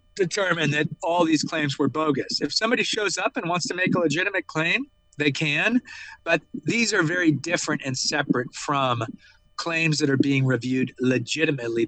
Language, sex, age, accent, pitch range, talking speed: English, male, 40-59, American, 135-160 Hz, 170 wpm